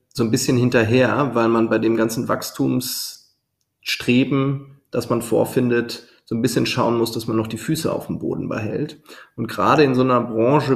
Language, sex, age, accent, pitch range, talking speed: German, male, 30-49, German, 115-135 Hz, 185 wpm